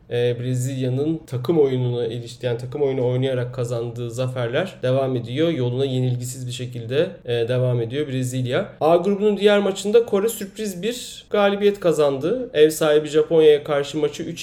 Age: 30-49